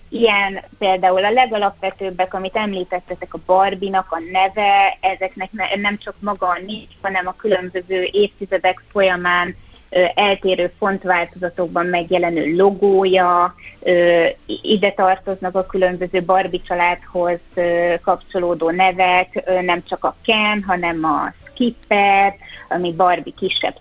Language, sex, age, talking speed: Hungarian, female, 20-39, 105 wpm